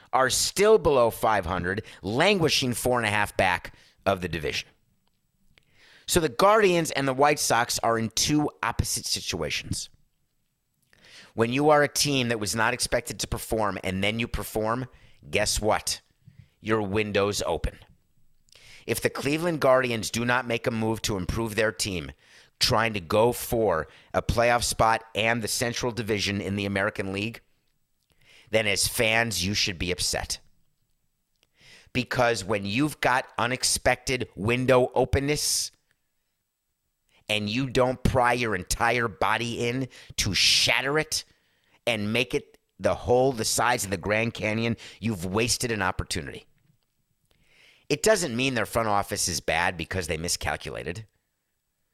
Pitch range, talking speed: 105-125 Hz, 145 wpm